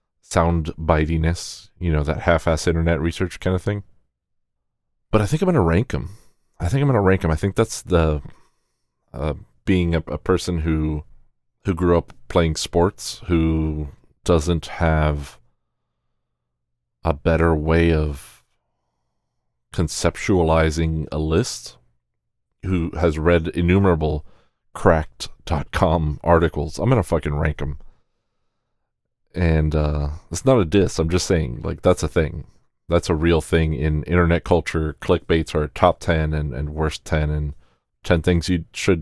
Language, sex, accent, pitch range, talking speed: English, male, American, 75-90 Hz, 150 wpm